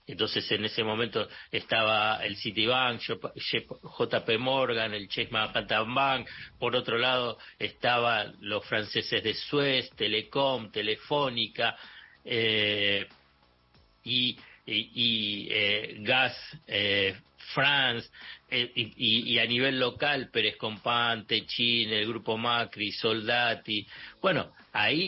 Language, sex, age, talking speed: Spanish, male, 50-69, 110 wpm